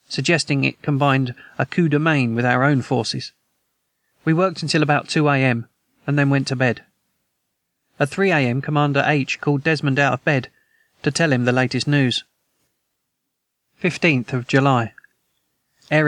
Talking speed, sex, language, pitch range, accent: 150 wpm, male, English, 130-150 Hz, British